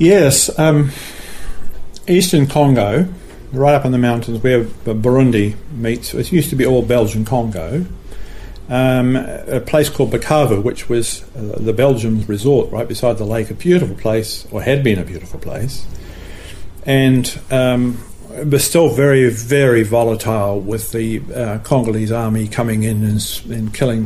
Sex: male